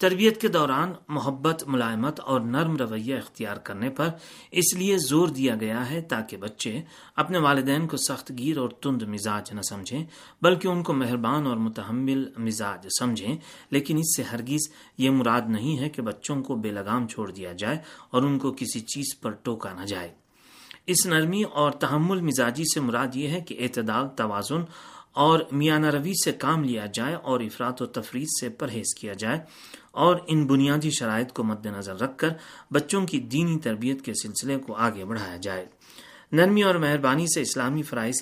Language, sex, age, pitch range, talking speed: Urdu, male, 30-49, 115-160 Hz, 180 wpm